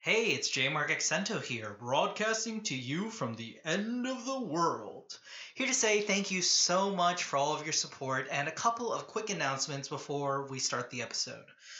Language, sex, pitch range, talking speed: English, male, 140-195 Hz, 195 wpm